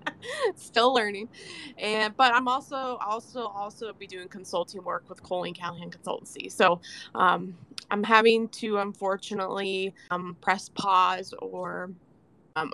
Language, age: English, 20-39